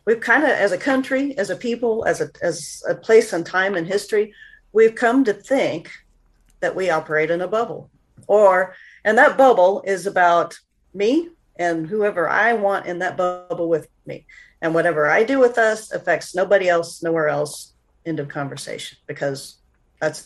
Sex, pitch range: female, 155-225 Hz